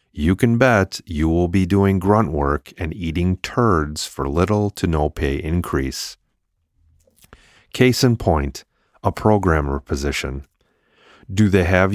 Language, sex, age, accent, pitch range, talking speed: English, male, 40-59, American, 75-100 Hz, 135 wpm